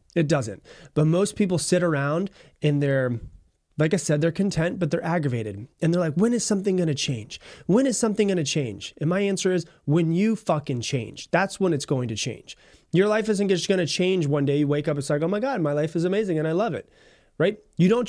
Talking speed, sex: 245 wpm, male